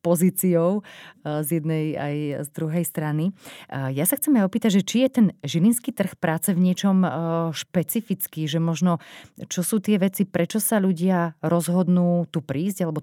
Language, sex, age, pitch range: Slovak, female, 30-49, 155-185 Hz